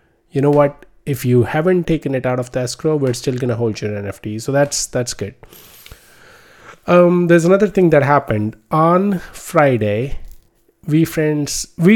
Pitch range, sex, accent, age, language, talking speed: 110-140 Hz, male, Indian, 20-39, English, 155 wpm